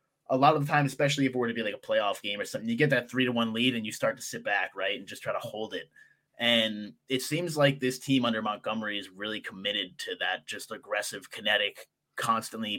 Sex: male